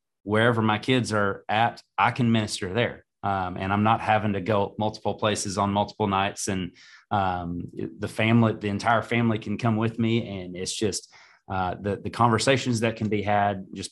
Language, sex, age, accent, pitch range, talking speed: English, male, 30-49, American, 95-110 Hz, 190 wpm